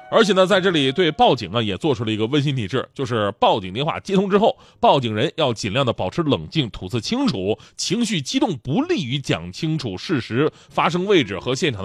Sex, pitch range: male, 120-195 Hz